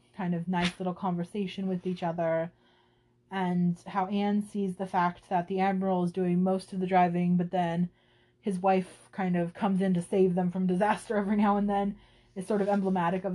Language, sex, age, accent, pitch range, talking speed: English, female, 20-39, American, 175-215 Hz, 200 wpm